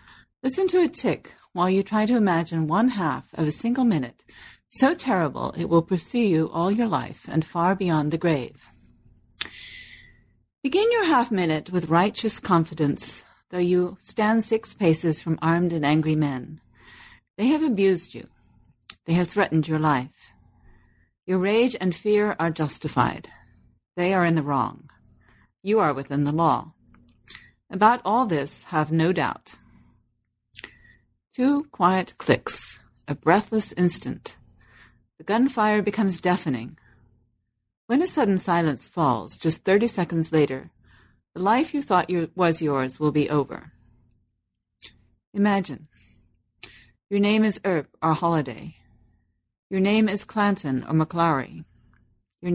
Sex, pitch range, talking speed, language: female, 125-200 Hz, 135 wpm, English